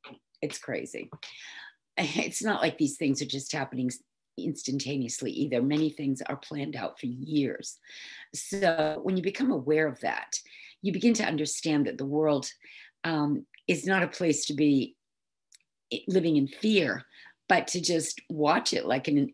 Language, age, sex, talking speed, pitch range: English, 50-69, female, 160 wpm, 140-165 Hz